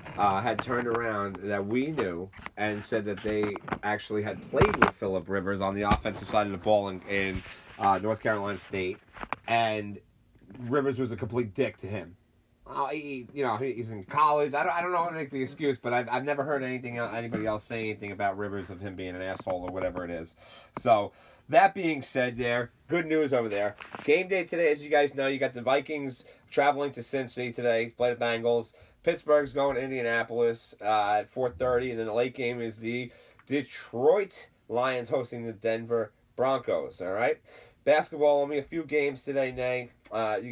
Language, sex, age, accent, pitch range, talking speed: English, male, 30-49, American, 105-135 Hz, 200 wpm